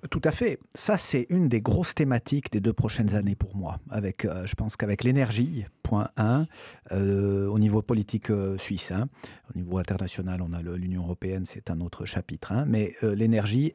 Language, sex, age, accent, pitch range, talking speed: French, male, 50-69, French, 100-125 Hz, 200 wpm